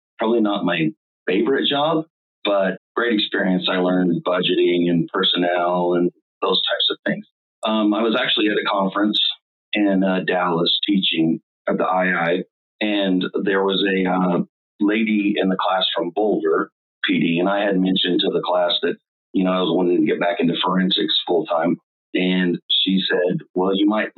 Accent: American